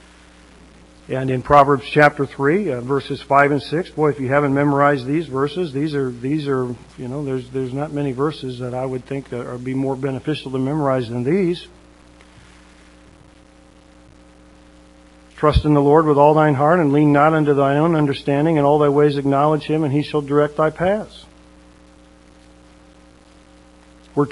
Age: 50-69